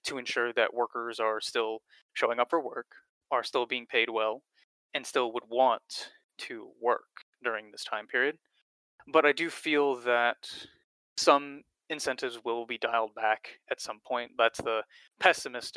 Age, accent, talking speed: 20-39, American, 160 wpm